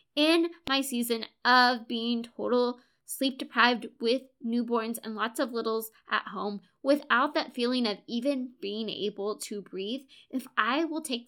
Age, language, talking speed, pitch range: 20-39, English, 150 wpm, 225-275 Hz